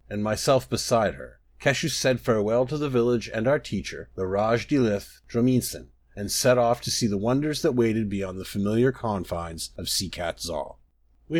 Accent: American